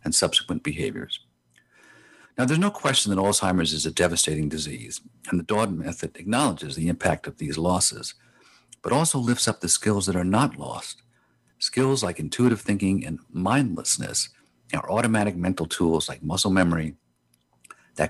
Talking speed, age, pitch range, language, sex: 155 wpm, 50-69, 80-115 Hz, English, male